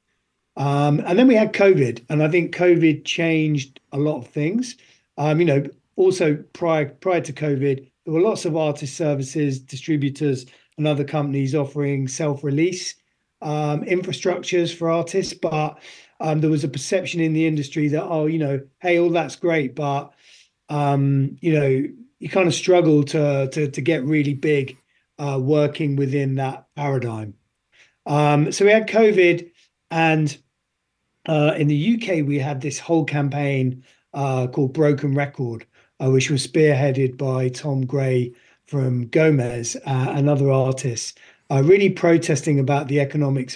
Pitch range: 135-165 Hz